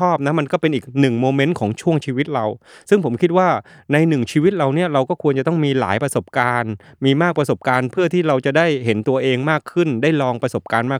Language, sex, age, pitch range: Thai, male, 20-39, 115-145 Hz